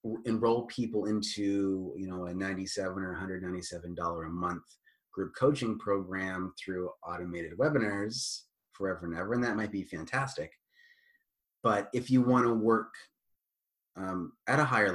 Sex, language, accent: male, English, American